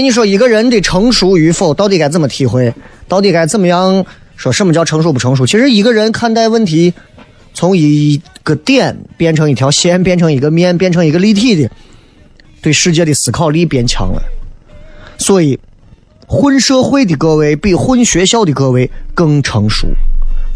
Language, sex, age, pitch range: Chinese, male, 30-49, 130-205 Hz